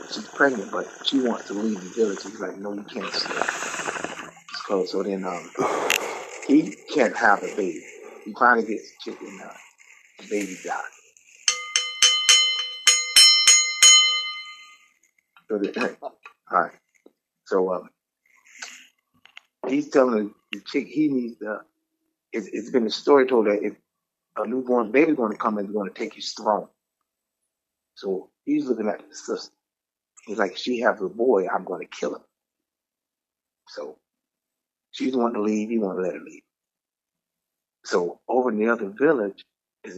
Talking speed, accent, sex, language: 150 wpm, American, male, English